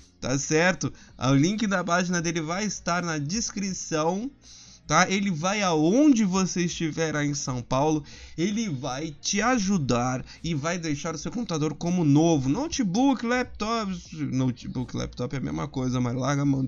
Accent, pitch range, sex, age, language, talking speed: Brazilian, 145-225 Hz, male, 20-39, Portuguese, 160 wpm